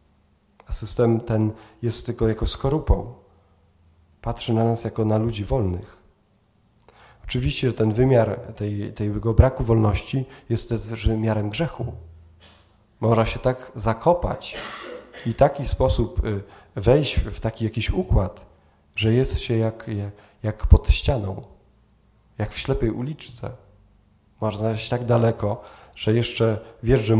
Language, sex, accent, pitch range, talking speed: Polish, male, native, 100-115 Hz, 130 wpm